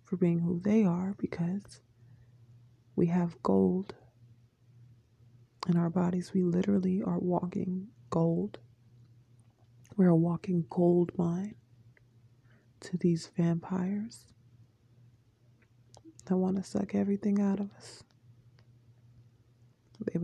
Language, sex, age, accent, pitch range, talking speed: English, female, 20-39, American, 120-185 Hz, 100 wpm